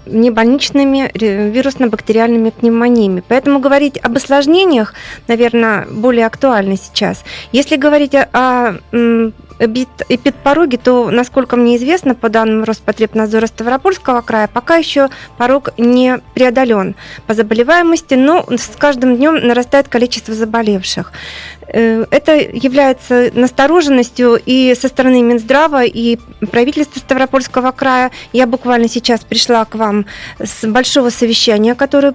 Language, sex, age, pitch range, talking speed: Russian, female, 20-39, 225-265 Hz, 120 wpm